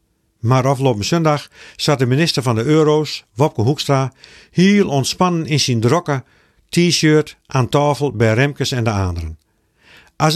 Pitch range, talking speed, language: 120-160 Hz, 145 wpm, Dutch